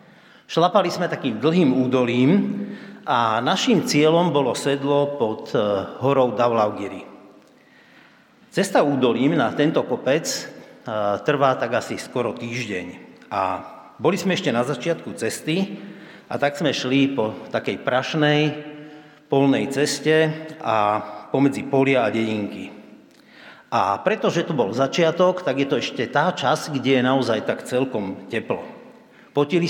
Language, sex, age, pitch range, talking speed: Slovak, male, 50-69, 125-160 Hz, 125 wpm